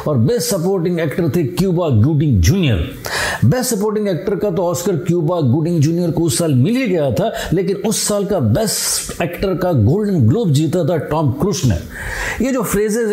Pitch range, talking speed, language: 145-195 Hz, 185 wpm, Hindi